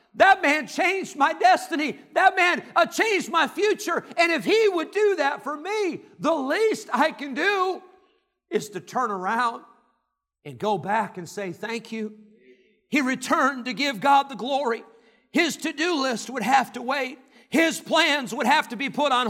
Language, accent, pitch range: English, American, 240-315 Hz